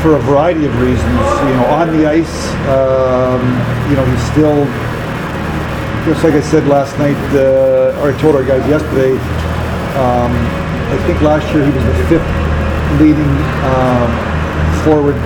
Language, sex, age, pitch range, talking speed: English, male, 50-69, 125-150 Hz, 155 wpm